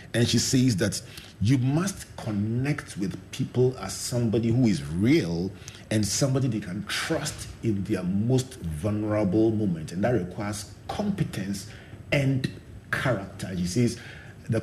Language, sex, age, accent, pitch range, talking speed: English, male, 40-59, Nigerian, 100-135 Hz, 135 wpm